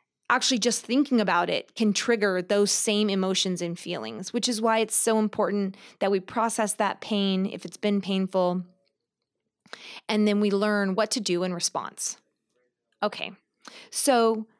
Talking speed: 155 wpm